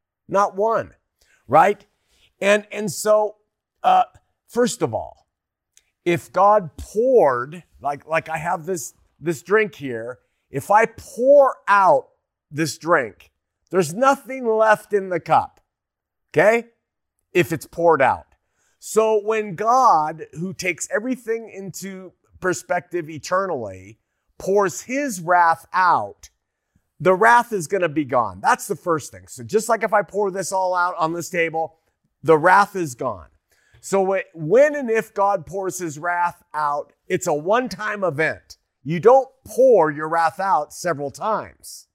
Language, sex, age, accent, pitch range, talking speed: English, male, 50-69, American, 155-205 Hz, 140 wpm